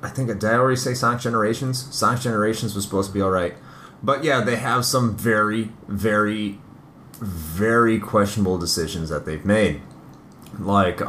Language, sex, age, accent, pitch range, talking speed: English, male, 30-49, American, 100-130 Hz, 150 wpm